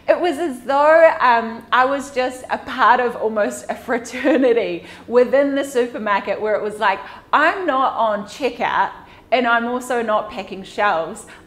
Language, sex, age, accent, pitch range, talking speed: English, female, 30-49, Australian, 205-285 Hz, 160 wpm